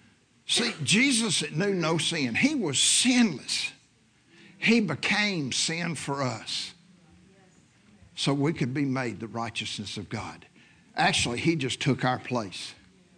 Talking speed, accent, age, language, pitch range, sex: 130 wpm, American, 60-79, English, 130-200 Hz, male